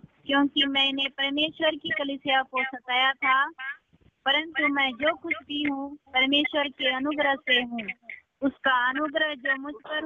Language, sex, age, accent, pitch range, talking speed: Hindi, female, 20-39, native, 265-305 Hz, 145 wpm